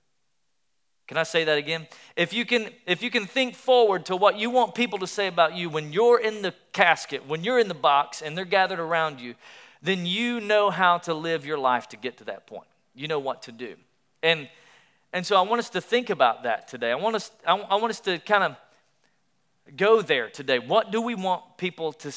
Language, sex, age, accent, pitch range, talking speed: English, male, 40-59, American, 150-200 Hz, 235 wpm